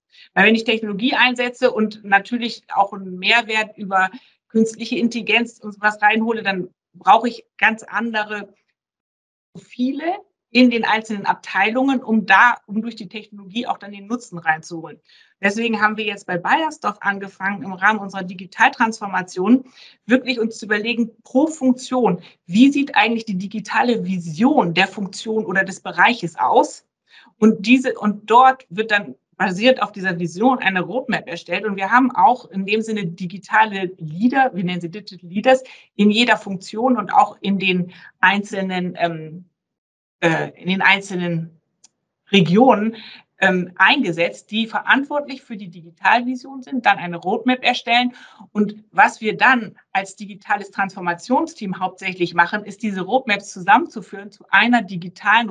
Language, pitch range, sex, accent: German, 190-235 Hz, female, German